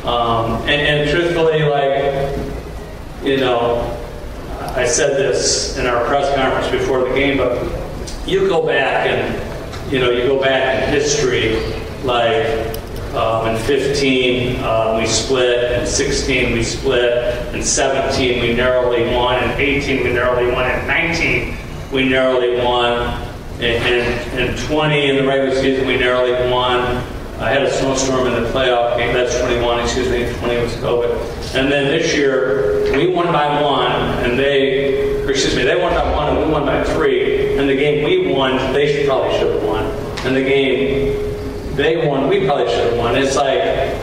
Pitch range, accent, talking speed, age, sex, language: 120-140 Hz, American, 170 wpm, 40-59, male, English